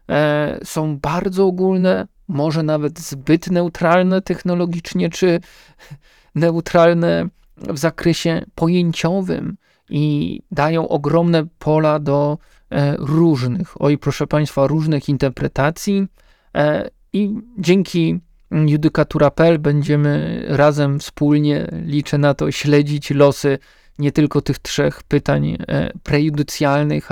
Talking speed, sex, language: 95 wpm, male, Polish